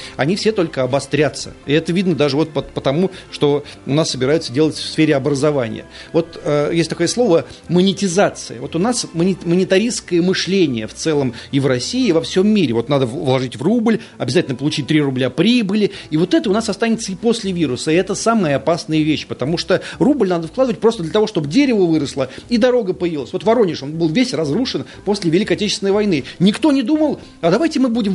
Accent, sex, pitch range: native, male, 155-215 Hz